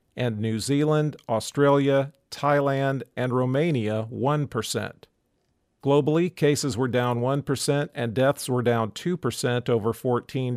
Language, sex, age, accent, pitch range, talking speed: English, male, 50-69, American, 120-140 Hz, 115 wpm